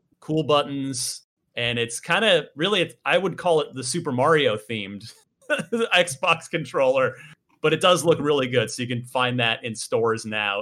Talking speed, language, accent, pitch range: 170 wpm, English, American, 125-180 Hz